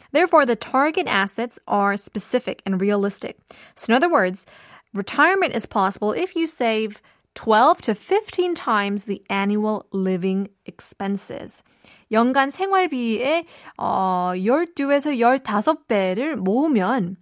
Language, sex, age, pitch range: Korean, female, 20-39, 195-255 Hz